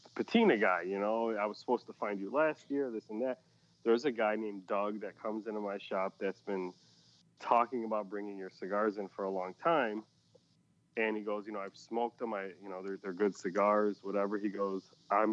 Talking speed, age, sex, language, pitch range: 220 wpm, 30-49, male, English, 100-125 Hz